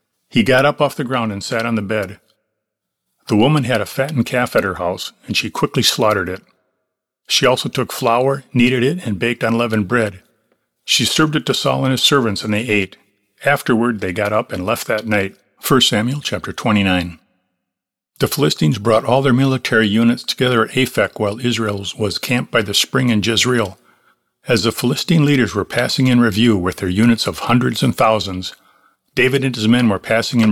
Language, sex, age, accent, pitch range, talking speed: English, male, 50-69, American, 105-130 Hz, 195 wpm